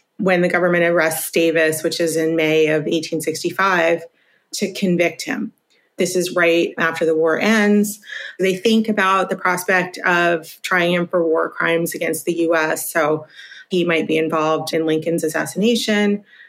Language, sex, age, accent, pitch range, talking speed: English, female, 30-49, American, 165-205 Hz, 155 wpm